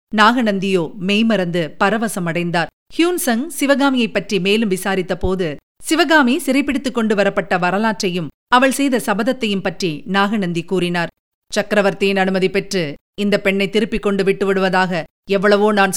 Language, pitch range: Tamil, 185-230 Hz